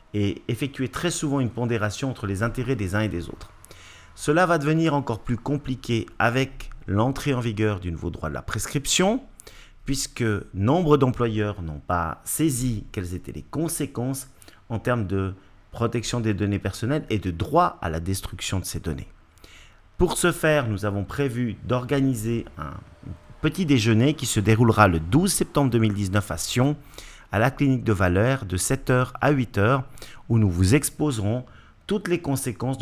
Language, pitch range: French, 100-135 Hz